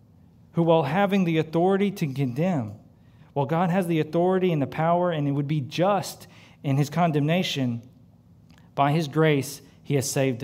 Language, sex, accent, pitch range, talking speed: English, male, American, 125-160 Hz, 165 wpm